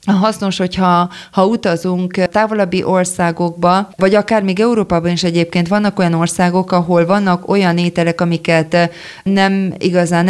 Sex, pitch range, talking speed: female, 170-190 Hz, 130 wpm